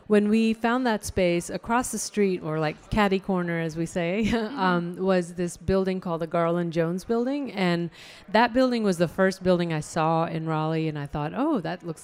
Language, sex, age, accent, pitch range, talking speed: English, female, 40-59, American, 160-190 Hz, 205 wpm